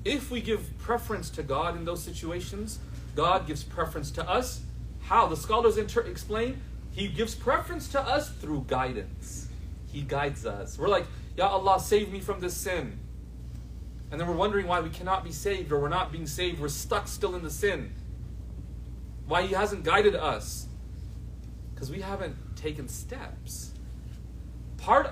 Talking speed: 160 wpm